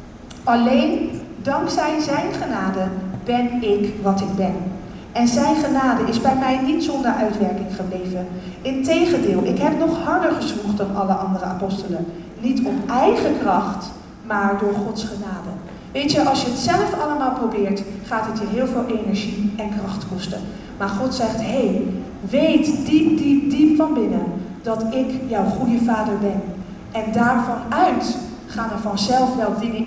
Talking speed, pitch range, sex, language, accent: 155 wpm, 205-280 Hz, female, Dutch, Dutch